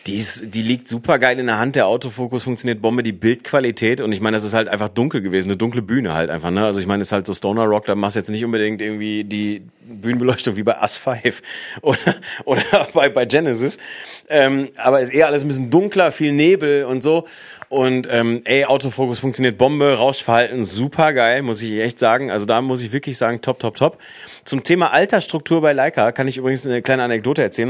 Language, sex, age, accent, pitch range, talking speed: German, male, 30-49, German, 115-150 Hz, 220 wpm